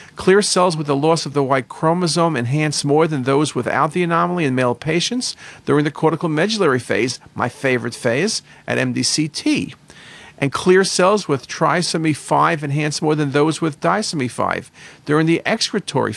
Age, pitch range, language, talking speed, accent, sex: 50-69, 140-180 Hz, English, 165 wpm, American, male